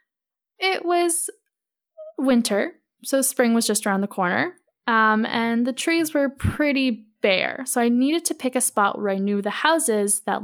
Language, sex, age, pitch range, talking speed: English, female, 10-29, 205-280 Hz, 170 wpm